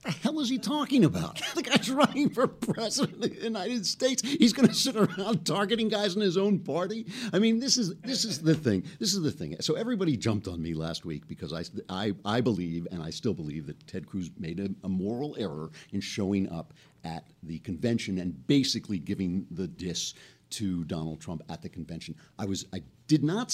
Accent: American